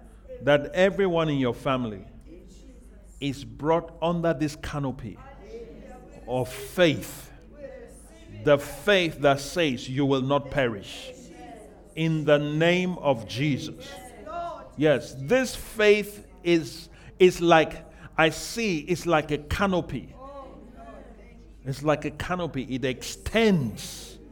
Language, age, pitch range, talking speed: English, 50-69, 150-230 Hz, 105 wpm